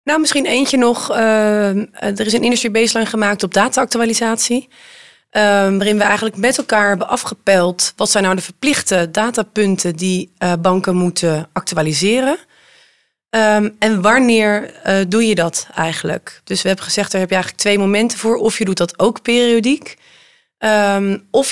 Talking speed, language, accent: 150 wpm, Dutch, Dutch